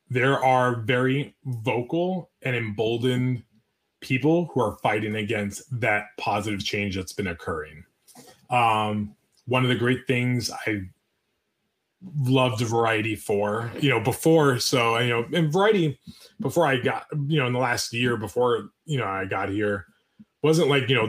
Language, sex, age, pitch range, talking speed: English, male, 20-39, 105-130 Hz, 155 wpm